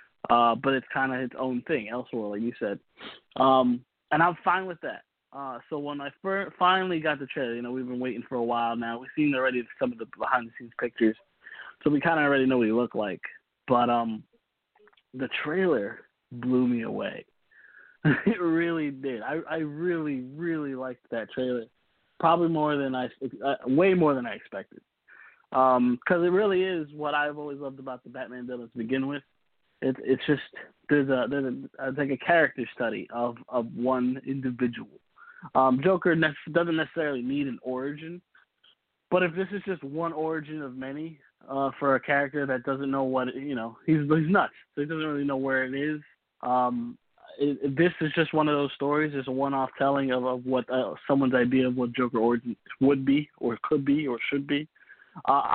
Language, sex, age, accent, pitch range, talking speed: English, male, 20-39, American, 125-155 Hz, 200 wpm